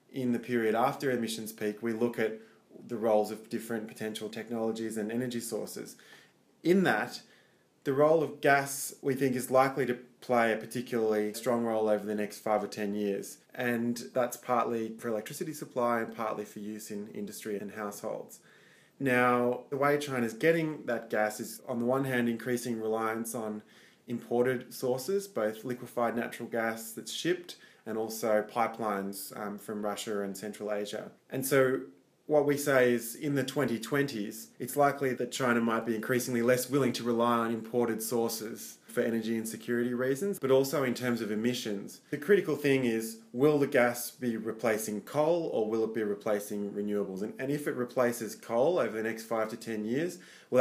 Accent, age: Australian, 20-39